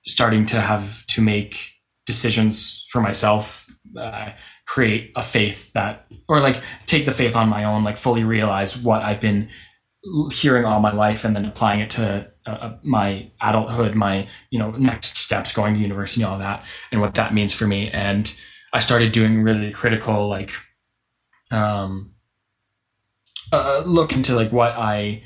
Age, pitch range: 20-39, 105-115 Hz